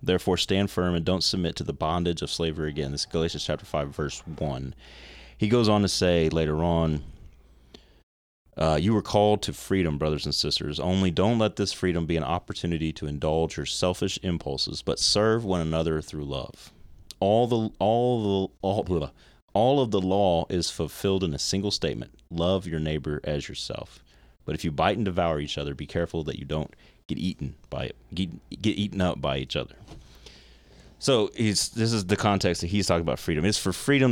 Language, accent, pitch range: English, American, 75-95 Hz